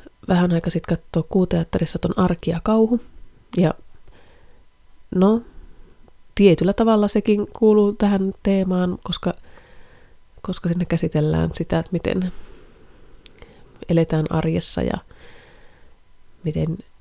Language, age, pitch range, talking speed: Finnish, 30-49, 170-200 Hz, 100 wpm